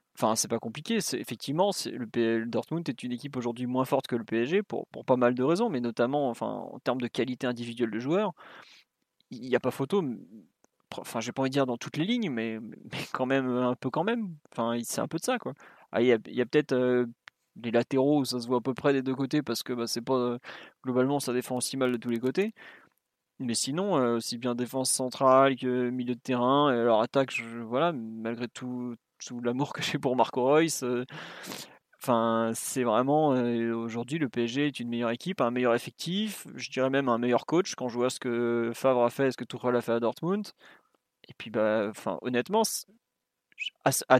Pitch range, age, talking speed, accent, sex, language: 120-145 Hz, 20-39, 225 wpm, French, male, French